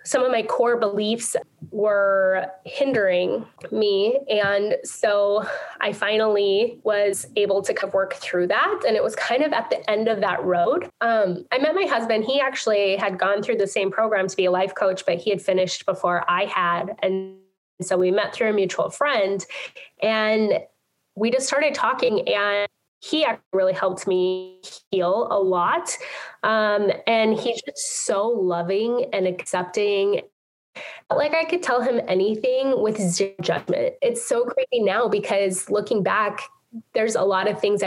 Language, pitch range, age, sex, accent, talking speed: English, 190-250 Hz, 10-29, female, American, 170 wpm